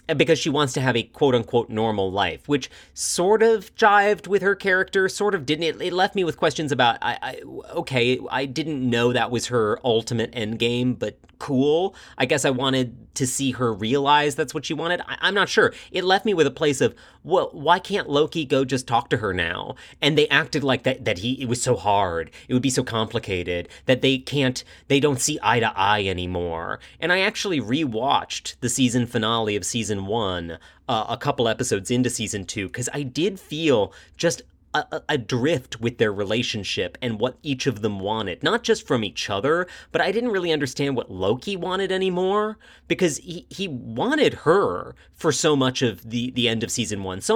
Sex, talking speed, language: male, 200 wpm, English